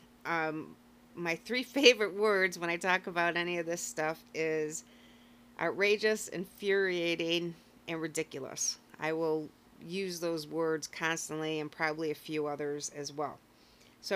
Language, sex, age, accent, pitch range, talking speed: English, female, 40-59, American, 150-175 Hz, 135 wpm